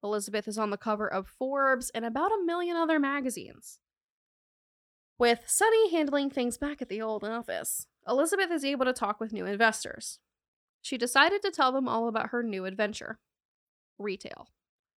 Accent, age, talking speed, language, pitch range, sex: American, 10-29, 165 wpm, English, 210-275 Hz, female